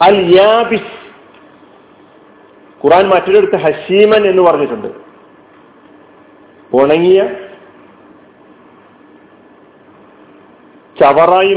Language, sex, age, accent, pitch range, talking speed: Malayalam, male, 50-69, native, 160-200 Hz, 50 wpm